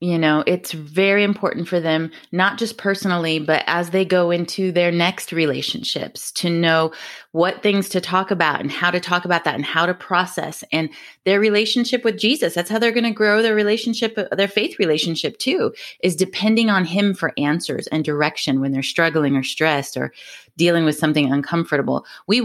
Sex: female